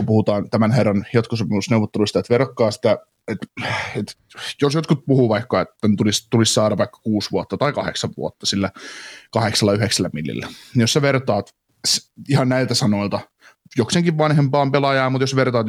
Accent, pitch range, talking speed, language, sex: native, 105-130 Hz, 160 wpm, Finnish, male